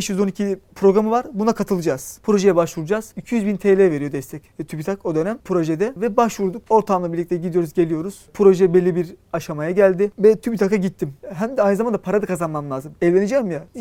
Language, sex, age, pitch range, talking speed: Turkish, male, 40-59, 170-210 Hz, 175 wpm